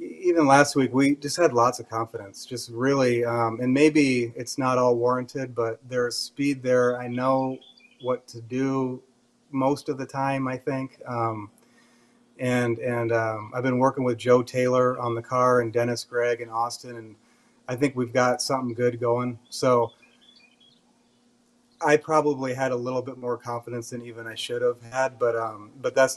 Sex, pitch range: male, 115-135 Hz